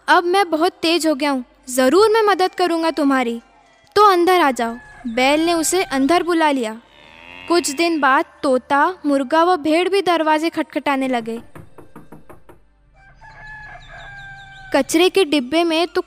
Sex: female